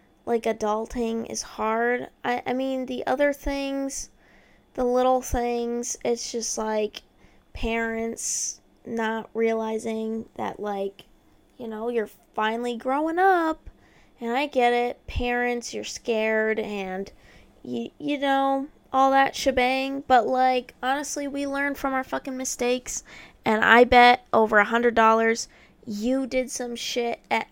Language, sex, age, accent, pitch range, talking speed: English, female, 20-39, American, 220-265 Hz, 130 wpm